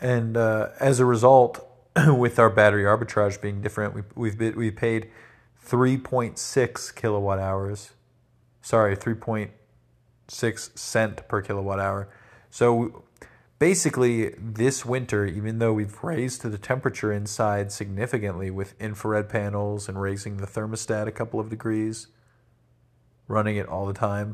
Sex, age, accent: male, 40-59, American